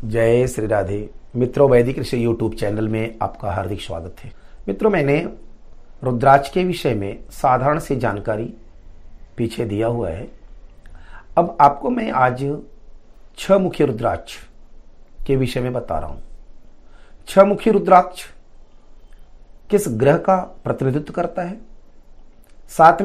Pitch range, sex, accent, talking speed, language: 115-175 Hz, male, native, 130 wpm, Hindi